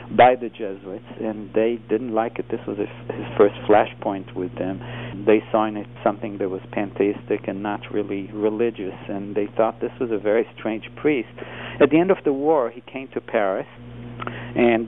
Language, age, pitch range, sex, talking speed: English, 50-69, 105-120 Hz, male, 190 wpm